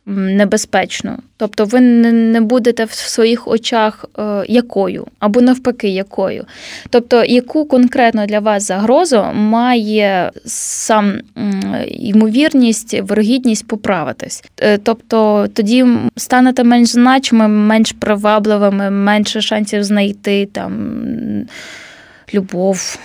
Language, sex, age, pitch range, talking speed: Ukrainian, female, 20-39, 205-245 Hz, 90 wpm